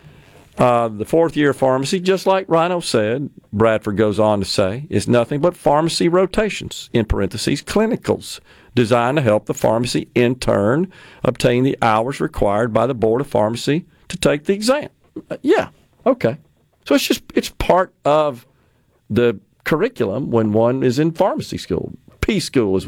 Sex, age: male, 50-69